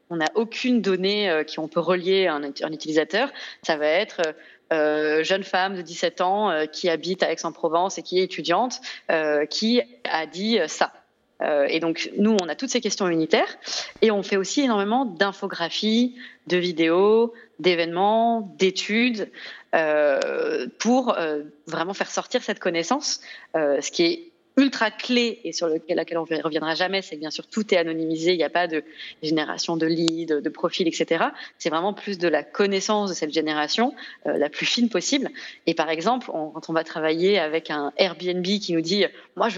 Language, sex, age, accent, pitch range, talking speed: French, female, 30-49, French, 165-225 Hz, 195 wpm